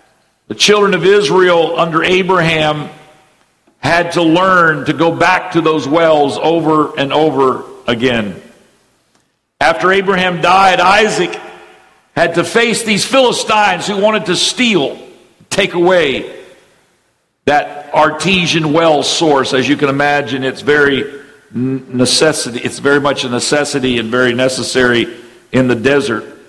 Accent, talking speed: American, 125 wpm